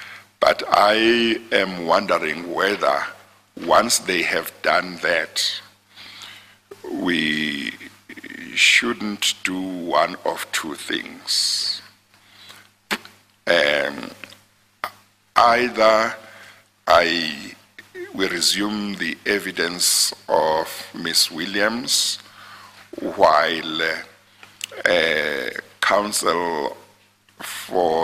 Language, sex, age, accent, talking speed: English, male, 60-79, Nigerian, 70 wpm